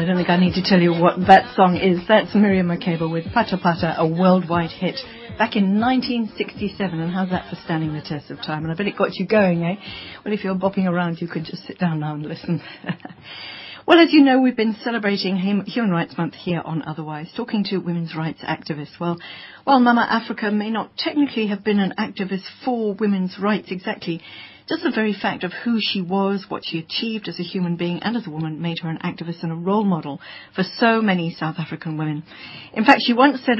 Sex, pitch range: female, 170-210 Hz